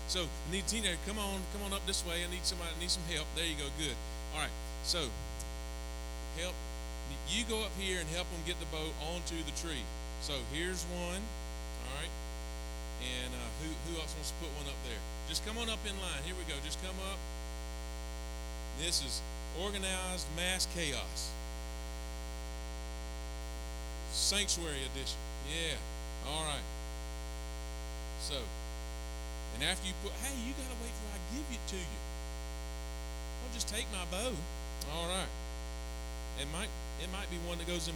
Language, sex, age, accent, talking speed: English, male, 40-59, American, 175 wpm